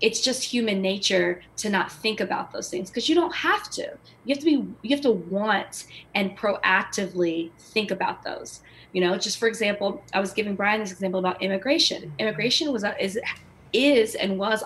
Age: 20-39